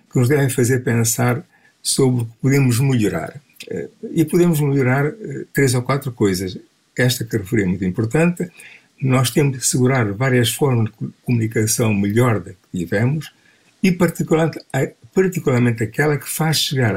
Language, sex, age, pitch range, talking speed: Portuguese, male, 60-79, 115-150 Hz, 140 wpm